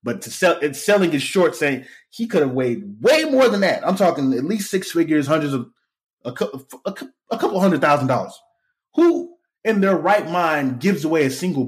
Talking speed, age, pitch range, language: 200 wpm, 20-39, 130-180 Hz, English